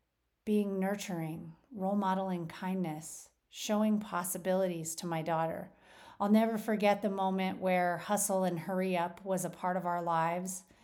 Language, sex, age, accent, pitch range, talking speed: English, female, 40-59, American, 180-210 Hz, 145 wpm